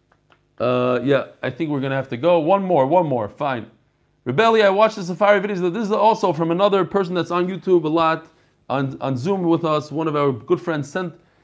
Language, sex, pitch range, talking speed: English, male, 150-195 Hz, 225 wpm